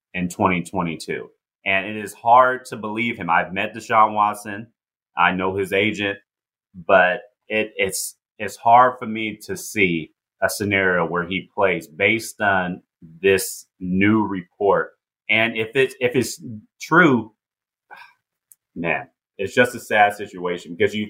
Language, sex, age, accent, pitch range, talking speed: English, male, 30-49, American, 90-110 Hz, 140 wpm